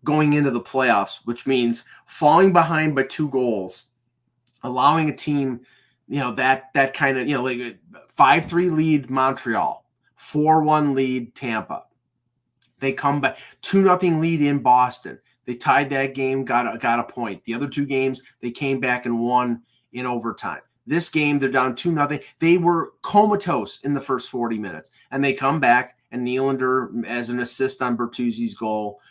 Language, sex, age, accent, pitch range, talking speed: English, male, 30-49, American, 115-140 Hz, 170 wpm